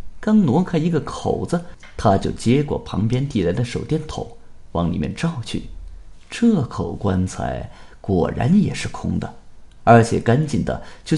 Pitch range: 90-150 Hz